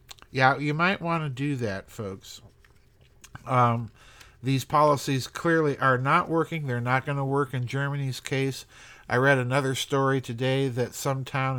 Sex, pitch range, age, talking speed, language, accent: male, 120-140 Hz, 50-69, 160 wpm, English, American